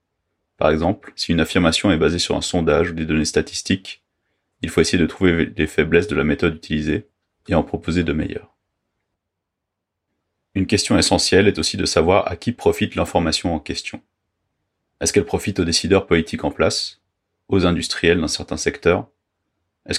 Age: 30-49